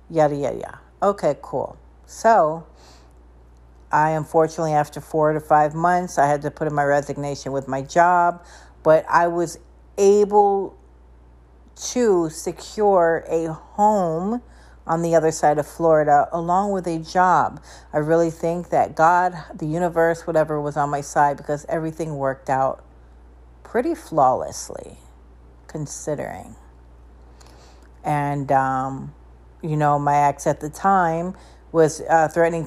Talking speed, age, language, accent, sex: 130 wpm, 50-69, English, American, female